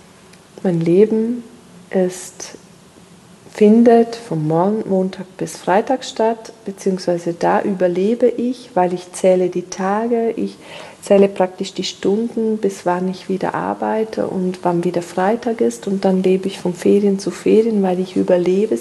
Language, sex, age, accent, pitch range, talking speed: German, female, 40-59, German, 180-215 Hz, 135 wpm